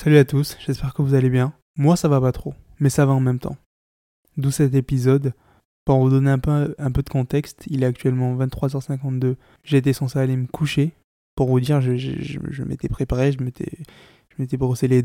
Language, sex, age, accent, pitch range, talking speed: French, male, 20-39, French, 125-140 Hz, 220 wpm